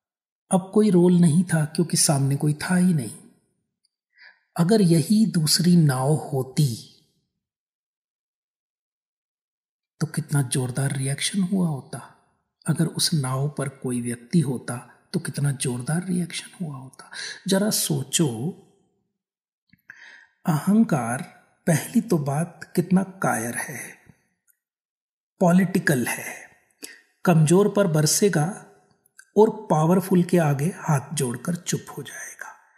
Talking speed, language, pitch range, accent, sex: 105 wpm, Hindi, 150-195 Hz, native, male